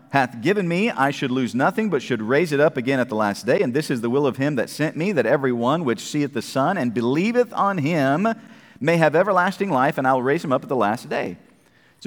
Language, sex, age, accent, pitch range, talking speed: English, male, 40-59, American, 130-185 Hz, 265 wpm